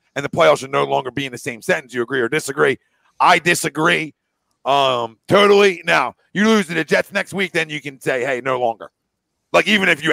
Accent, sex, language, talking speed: American, male, English, 225 wpm